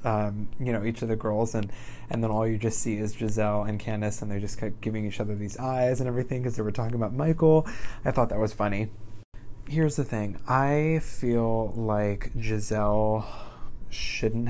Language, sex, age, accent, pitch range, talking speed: English, male, 20-39, American, 105-125 Hz, 205 wpm